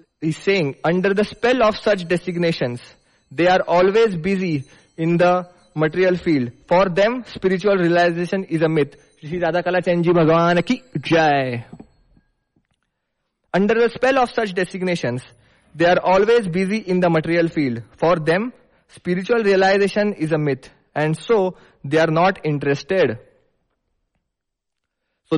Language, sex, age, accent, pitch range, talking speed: English, male, 20-39, Indian, 155-195 Hz, 120 wpm